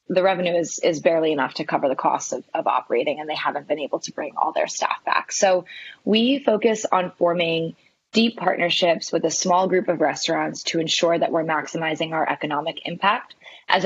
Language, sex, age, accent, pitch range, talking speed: English, female, 20-39, American, 165-185 Hz, 200 wpm